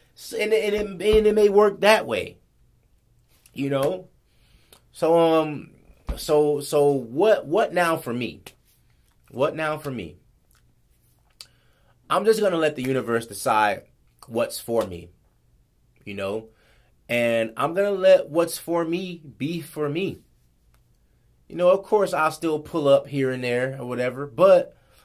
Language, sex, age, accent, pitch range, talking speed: English, male, 30-49, American, 110-150 Hz, 150 wpm